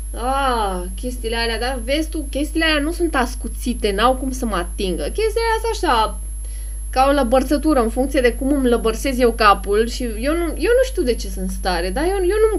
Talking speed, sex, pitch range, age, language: 205 wpm, female, 185-265 Hz, 20-39, English